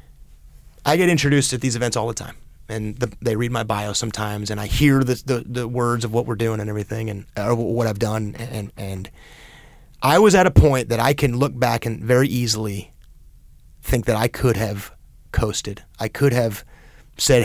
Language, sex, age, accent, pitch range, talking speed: English, male, 30-49, American, 100-125 Hz, 205 wpm